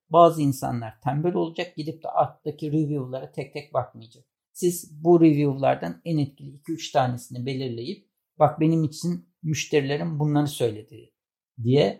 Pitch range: 140-175 Hz